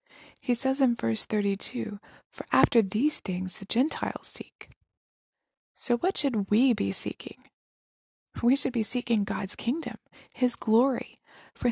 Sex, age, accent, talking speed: female, 20-39, American, 140 wpm